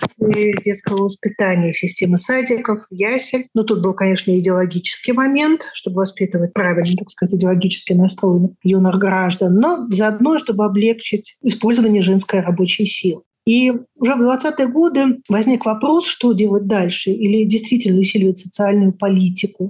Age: 30-49